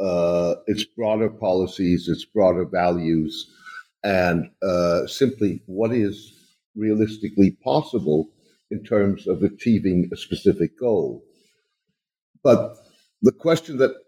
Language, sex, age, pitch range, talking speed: English, male, 60-79, 90-120 Hz, 105 wpm